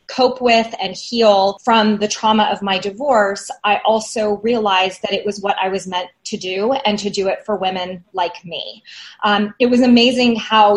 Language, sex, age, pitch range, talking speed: English, female, 30-49, 200-225 Hz, 195 wpm